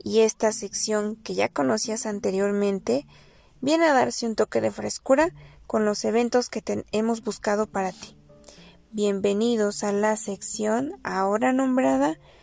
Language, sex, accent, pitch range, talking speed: Spanish, female, Mexican, 200-240 Hz, 140 wpm